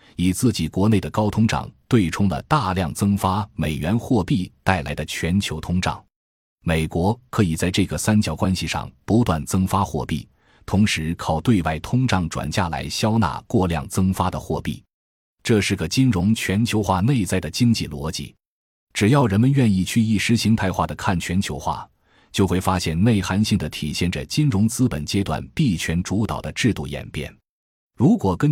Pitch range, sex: 80-110 Hz, male